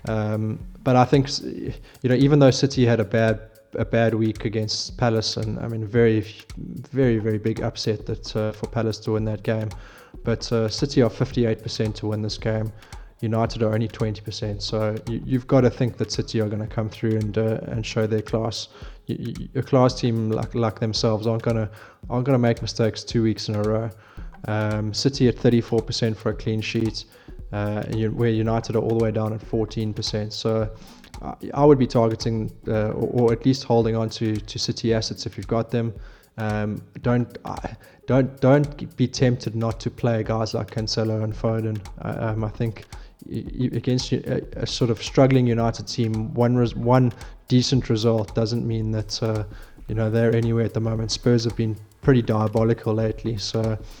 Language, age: English, 20-39